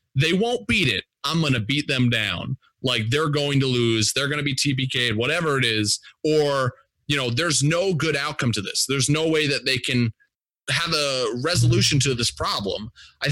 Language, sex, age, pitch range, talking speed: English, male, 30-49, 120-155 Hz, 205 wpm